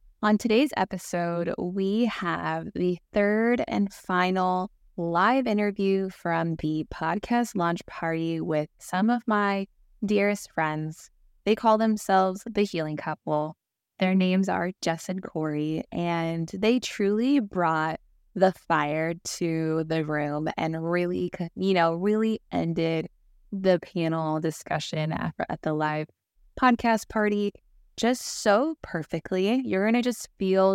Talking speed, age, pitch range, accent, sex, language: 125 wpm, 20-39, 165-205 Hz, American, female, English